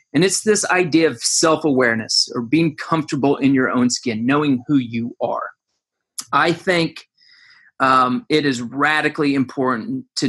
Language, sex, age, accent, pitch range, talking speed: English, male, 30-49, American, 130-160 Hz, 145 wpm